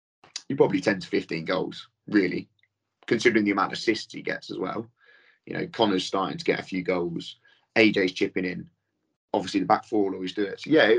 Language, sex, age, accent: English, male, 30-49, British